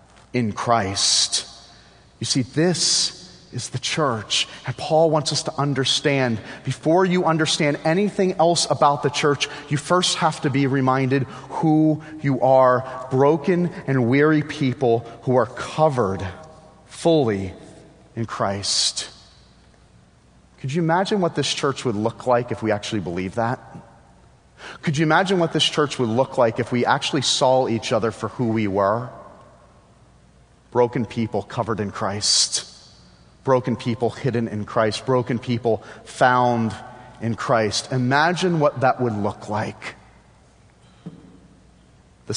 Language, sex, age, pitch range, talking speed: English, male, 30-49, 110-145 Hz, 135 wpm